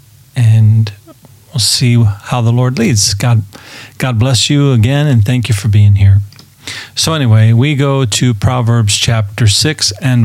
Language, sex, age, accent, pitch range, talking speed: English, male, 40-59, American, 110-135 Hz, 160 wpm